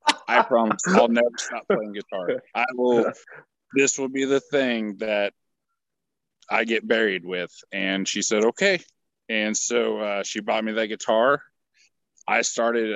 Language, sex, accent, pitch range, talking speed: English, male, American, 115-135 Hz, 155 wpm